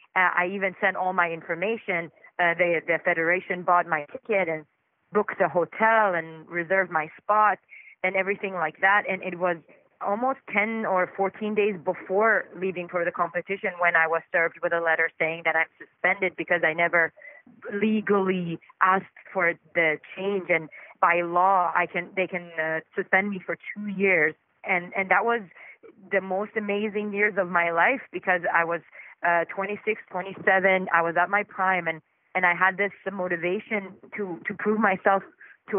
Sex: female